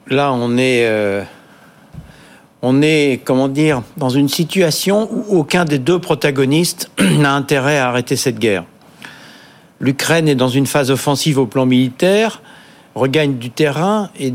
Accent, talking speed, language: French, 145 wpm, French